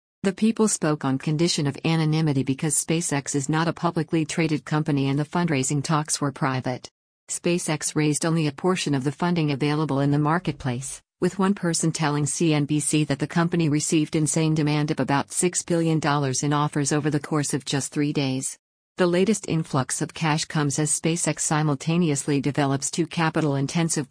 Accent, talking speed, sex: American, 170 wpm, female